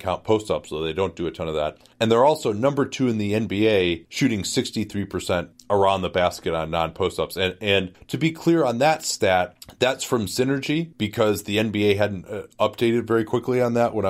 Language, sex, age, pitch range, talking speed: English, male, 30-49, 95-115 Hz, 200 wpm